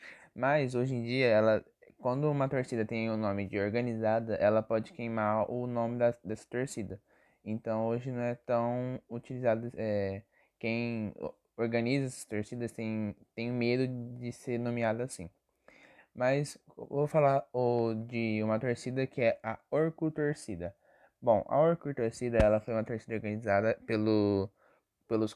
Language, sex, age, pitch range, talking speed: Portuguese, male, 10-29, 110-135 Hz, 140 wpm